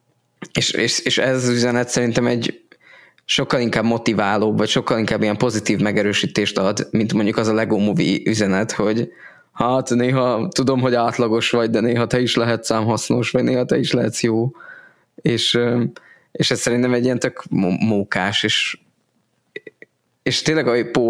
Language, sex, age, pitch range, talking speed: Hungarian, male, 20-39, 105-120 Hz, 160 wpm